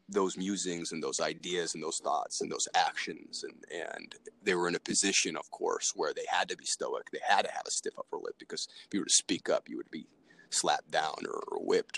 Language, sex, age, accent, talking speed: English, male, 30-49, American, 240 wpm